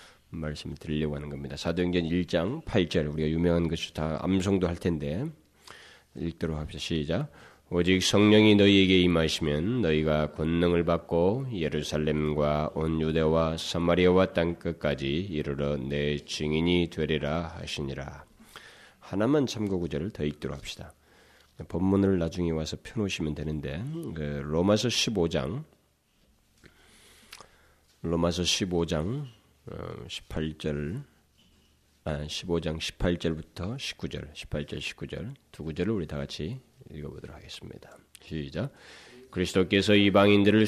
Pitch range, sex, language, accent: 75-95 Hz, male, Korean, native